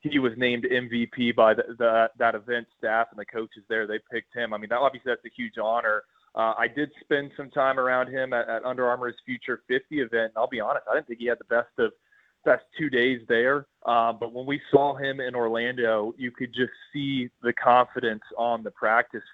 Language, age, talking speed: English, 20-39, 225 wpm